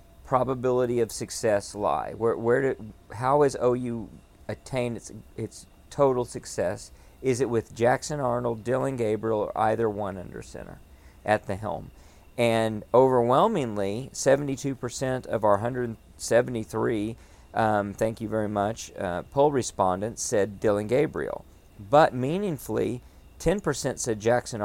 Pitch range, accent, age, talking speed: 105-125 Hz, American, 50-69, 125 wpm